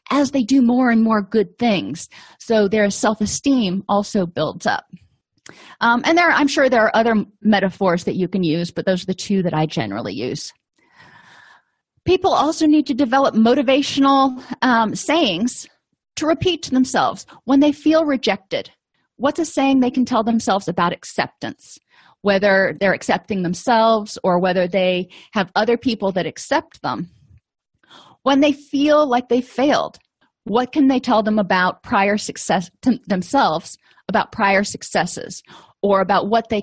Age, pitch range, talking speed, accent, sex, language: 30-49, 200-270 Hz, 160 wpm, American, female, English